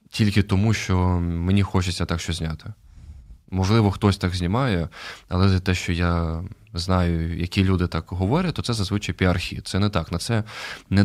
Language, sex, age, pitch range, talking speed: Ukrainian, male, 20-39, 90-105 Hz, 170 wpm